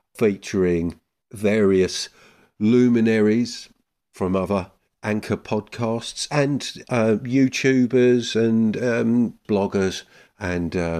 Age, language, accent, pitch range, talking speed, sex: 50-69, English, British, 90-115 Hz, 75 wpm, male